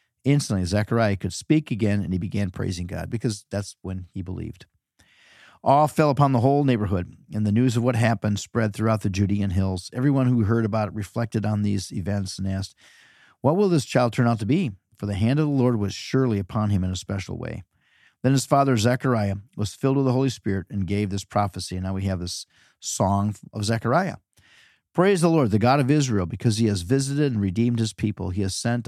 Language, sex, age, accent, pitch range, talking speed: English, male, 50-69, American, 100-125 Hz, 220 wpm